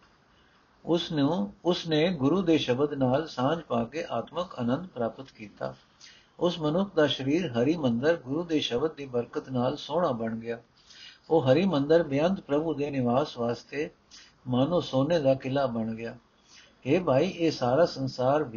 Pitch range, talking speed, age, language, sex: 125-160 Hz, 130 wpm, 60-79, Punjabi, male